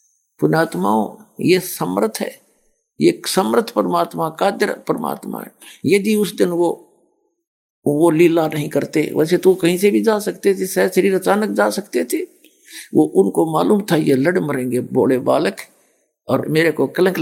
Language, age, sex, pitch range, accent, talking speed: Hindi, 60-79, male, 150-210 Hz, native, 155 wpm